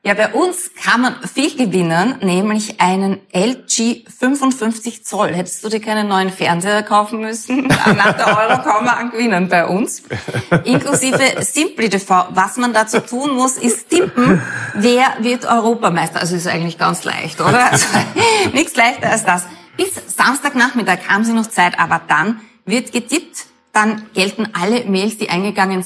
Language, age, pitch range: German, 30-49, 185-240 Hz